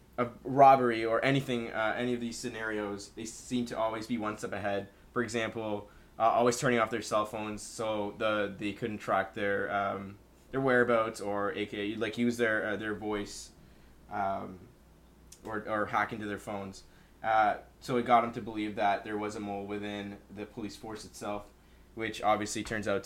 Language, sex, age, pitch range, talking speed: English, male, 20-39, 100-120 Hz, 180 wpm